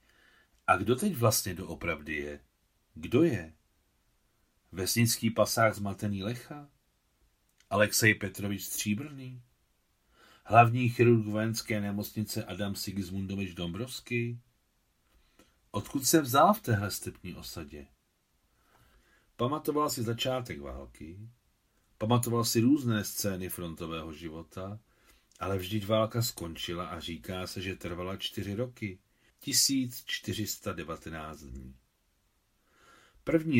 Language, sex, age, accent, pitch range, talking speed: Czech, male, 40-59, native, 90-120 Hz, 95 wpm